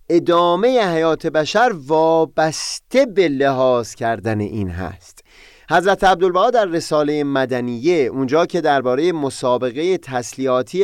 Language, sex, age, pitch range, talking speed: Persian, male, 30-49, 115-175 Hz, 105 wpm